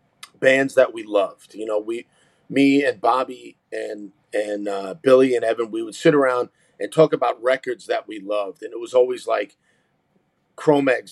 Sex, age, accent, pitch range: male, 40-59, American, 125-165 Hz